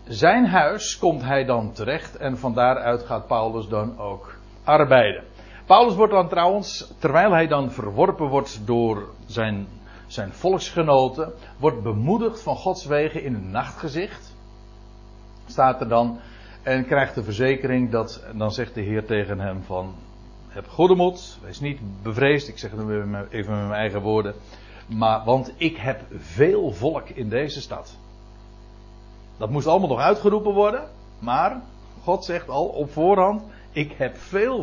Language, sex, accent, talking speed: Dutch, male, Dutch, 155 wpm